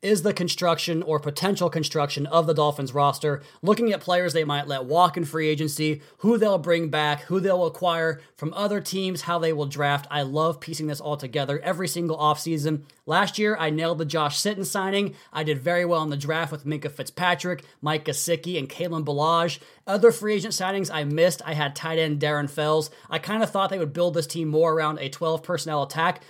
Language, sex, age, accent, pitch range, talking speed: English, male, 30-49, American, 150-185 Hz, 210 wpm